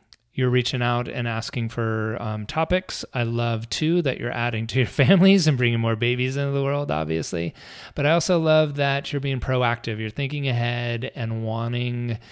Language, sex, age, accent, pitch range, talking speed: English, male, 30-49, American, 115-130 Hz, 185 wpm